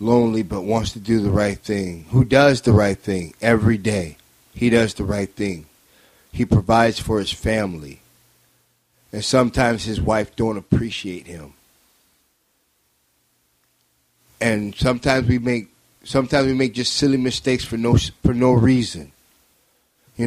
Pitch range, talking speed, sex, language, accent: 95-125 Hz, 140 wpm, male, English, American